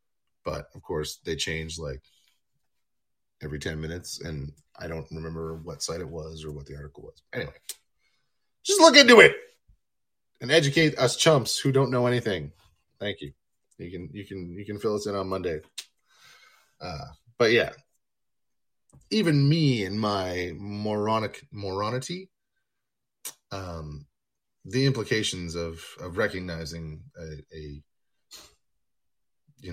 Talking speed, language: 135 wpm, English